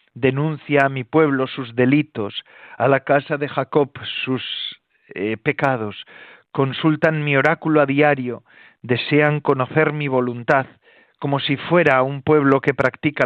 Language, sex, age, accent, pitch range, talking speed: Spanish, male, 40-59, Spanish, 120-145 Hz, 135 wpm